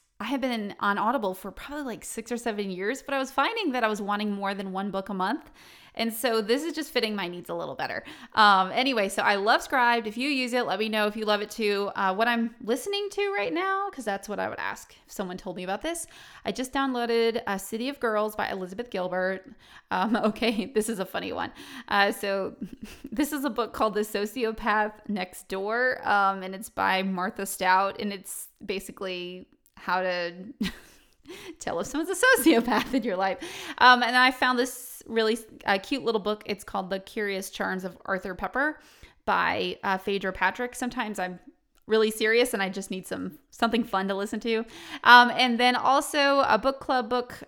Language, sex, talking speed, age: English, female, 210 wpm, 20-39